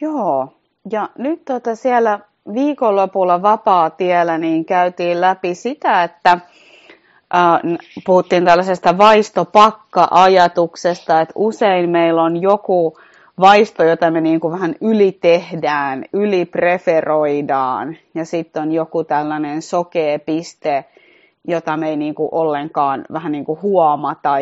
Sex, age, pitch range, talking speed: female, 30-49, 165-205 Hz, 105 wpm